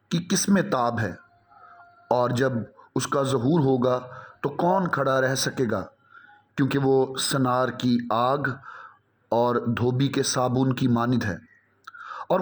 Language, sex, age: Hindi, male, 30-49